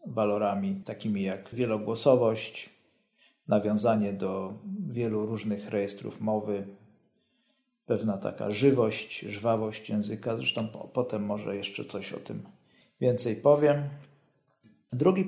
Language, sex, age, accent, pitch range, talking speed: Polish, male, 40-59, native, 110-150 Hz, 100 wpm